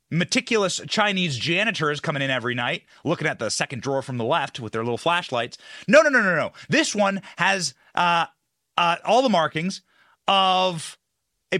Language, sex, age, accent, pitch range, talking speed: English, male, 30-49, American, 160-240 Hz, 175 wpm